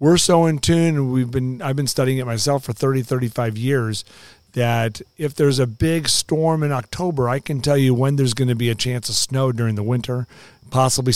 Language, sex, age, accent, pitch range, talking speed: English, male, 40-59, American, 120-150 Hz, 210 wpm